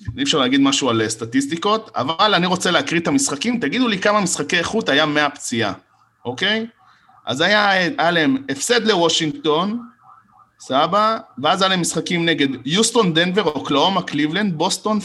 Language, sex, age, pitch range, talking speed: Hebrew, male, 20-39, 150-210 Hz, 140 wpm